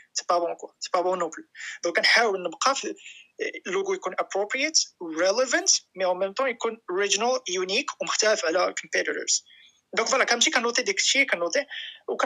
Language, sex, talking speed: Arabic, male, 85 wpm